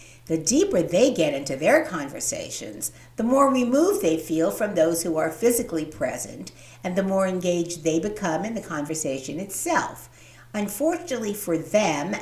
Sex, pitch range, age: female, 140-195 Hz, 60-79